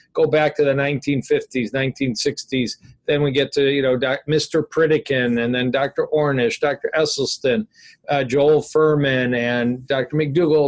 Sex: male